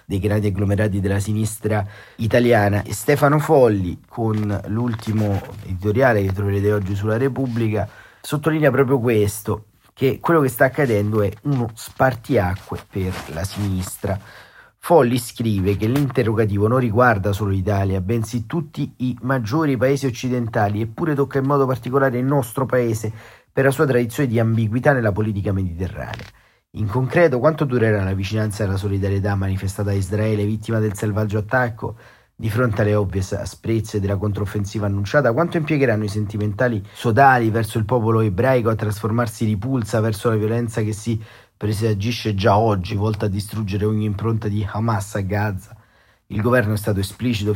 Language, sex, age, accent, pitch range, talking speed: Italian, male, 40-59, native, 105-120 Hz, 150 wpm